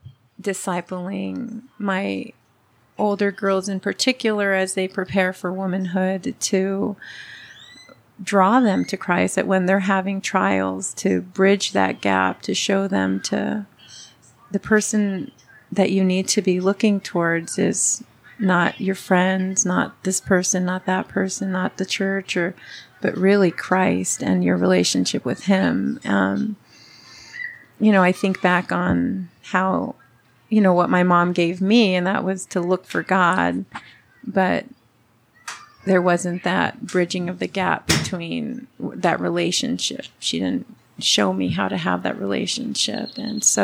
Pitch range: 180-200 Hz